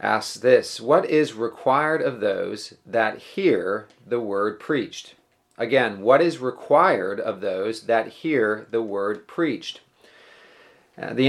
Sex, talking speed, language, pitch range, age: male, 130 wpm, English, 105-145 Hz, 40-59